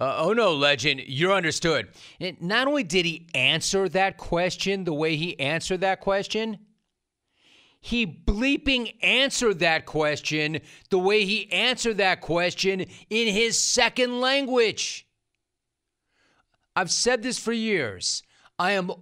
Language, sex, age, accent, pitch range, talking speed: English, male, 40-59, American, 150-215 Hz, 130 wpm